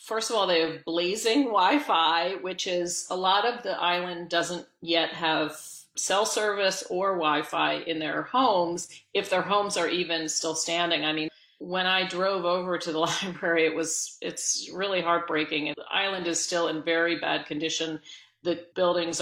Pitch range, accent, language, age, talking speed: 160-195 Hz, American, English, 40-59, 170 wpm